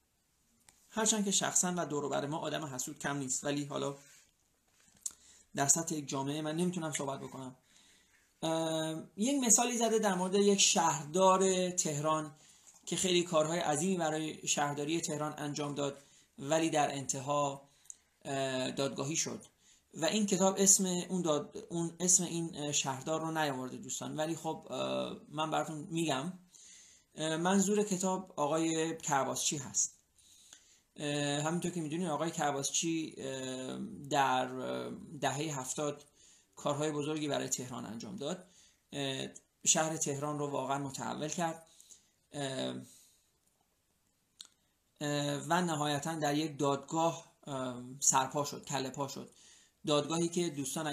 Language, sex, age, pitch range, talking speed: Persian, male, 30-49, 140-165 Hz, 115 wpm